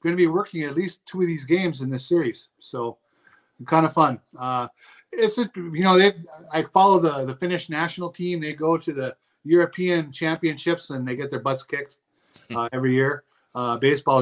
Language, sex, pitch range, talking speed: English, male, 135-175 Hz, 200 wpm